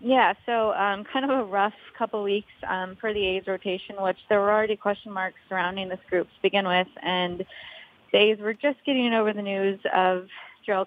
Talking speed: 200 wpm